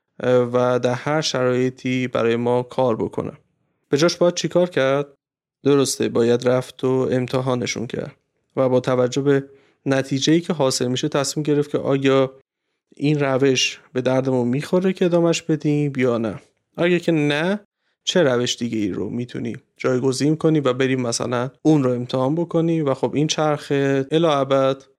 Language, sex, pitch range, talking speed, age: Persian, male, 125-145 Hz, 160 wpm, 30-49